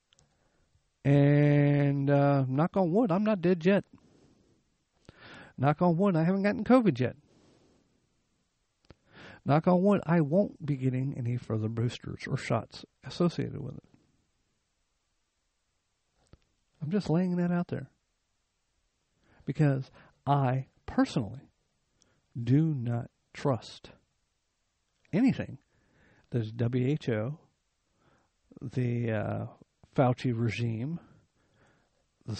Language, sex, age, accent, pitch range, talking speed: English, male, 50-69, American, 115-160 Hz, 95 wpm